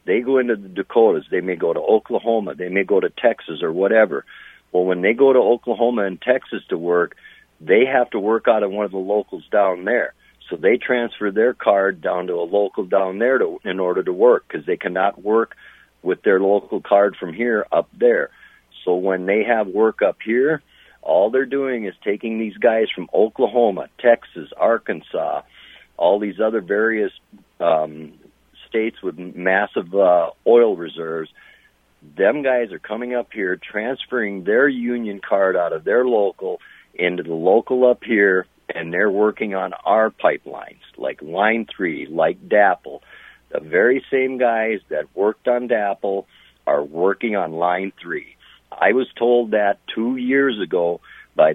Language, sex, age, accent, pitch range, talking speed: English, male, 50-69, American, 100-130 Hz, 170 wpm